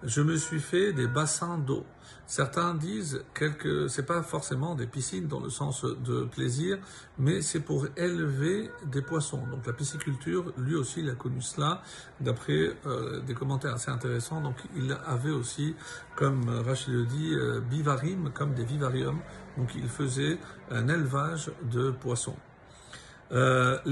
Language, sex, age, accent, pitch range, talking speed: French, male, 50-69, French, 125-160 Hz, 155 wpm